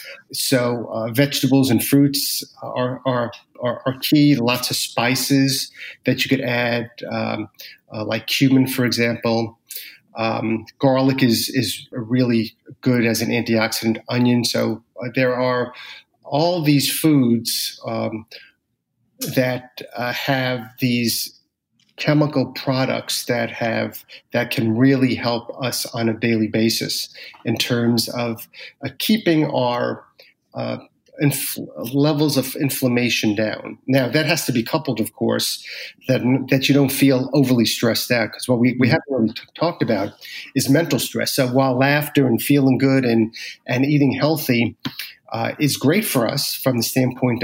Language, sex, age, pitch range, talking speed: English, male, 40-59, 115-135 Hz, 145 wpm